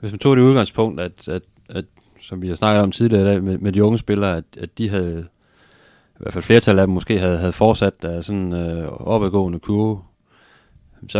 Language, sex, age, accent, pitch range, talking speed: Danish, male, 30-49, native, 85-100 Hz, 220 wpm